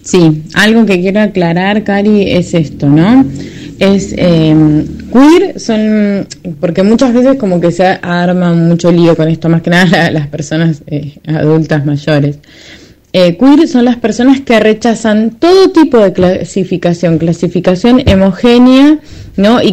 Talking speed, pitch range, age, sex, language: 145 wpm, 160-230 Hz, 20-39, female, Spanish